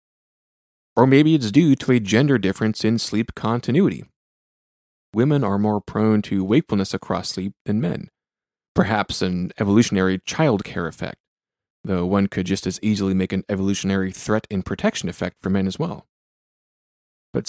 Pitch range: 95-120 Hz